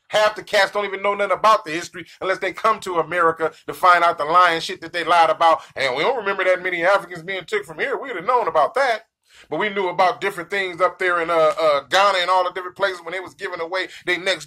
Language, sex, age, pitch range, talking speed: English, male, 20-39, 175-215 Hz, 275 wpm